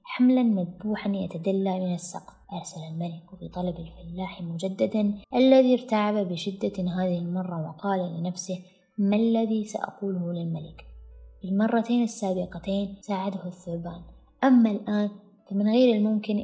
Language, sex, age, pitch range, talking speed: Arabic, female, 20-39, 175-205 Hz, 115 wpm